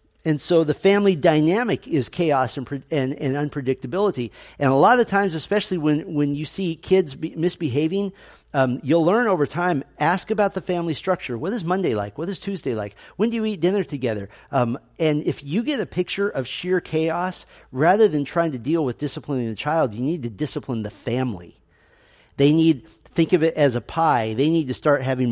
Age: 40-59